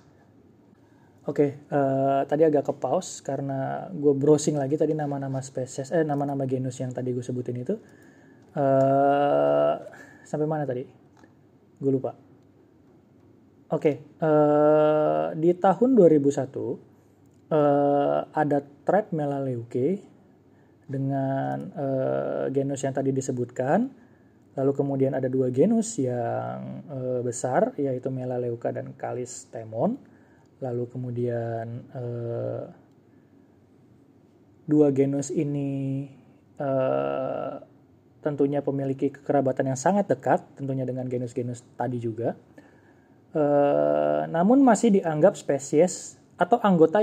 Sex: male